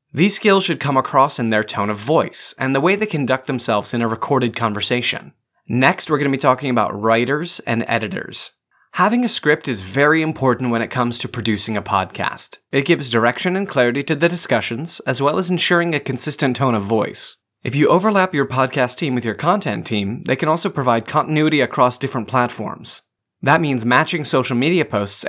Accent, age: American, 30-49